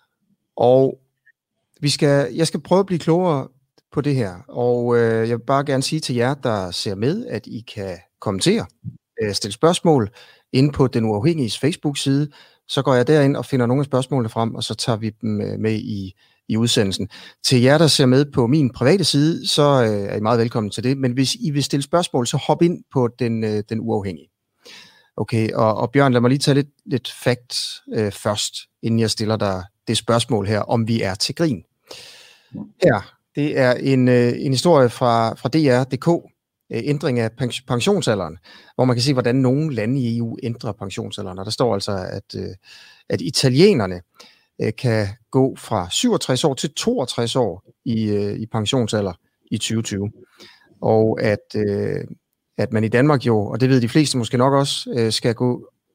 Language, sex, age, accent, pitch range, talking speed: Danish, male, 30-49, native, 110-140 Hz, 180 wpm